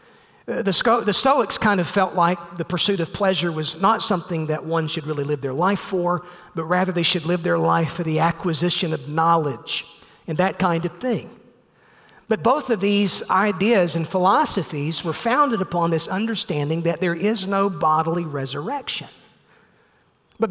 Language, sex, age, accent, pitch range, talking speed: English, male, 40-59, American, 170-210 Hz, 165 wpm